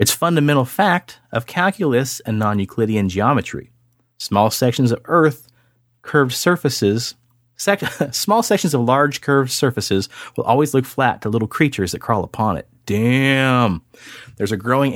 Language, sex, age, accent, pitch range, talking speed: English, male, 30-49, American, 105-130 Hz, 145 wpm